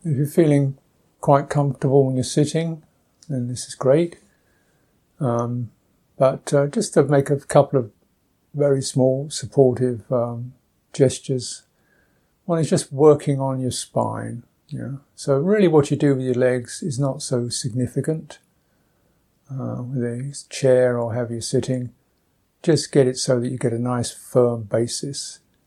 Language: English